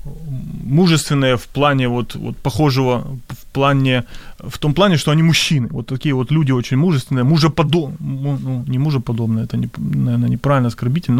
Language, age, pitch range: Ukrainian, 20-39, 130-170 Hz